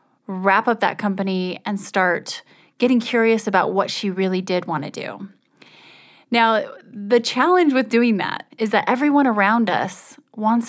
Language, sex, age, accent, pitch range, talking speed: English, female, 30-49, American, 195-245 Hz, 155 wpm